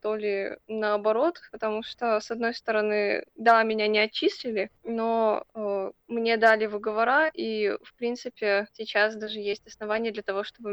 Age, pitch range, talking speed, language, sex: 20-39, 210-240 Hz, 150 wpm, Russian, female